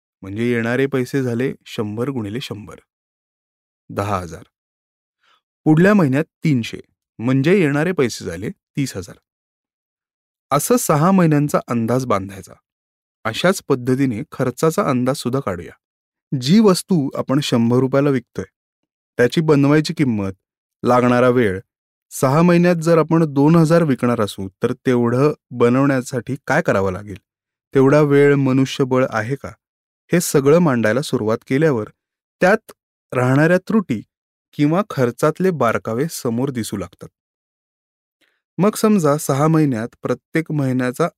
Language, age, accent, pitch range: Marathi, 30-49, native, 120-155 Hz